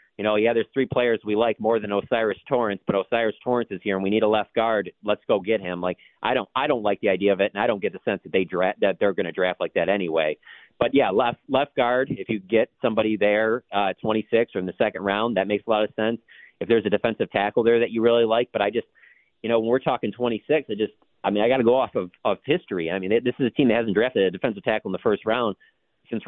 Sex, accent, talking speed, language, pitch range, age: male, American, 290 wpm, English, 110-135 Hz, 40-59